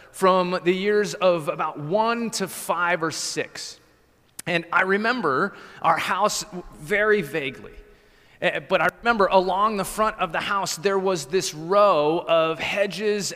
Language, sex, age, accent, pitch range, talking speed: English, male, 30-49, American, 180-220 Hz, 145 wpm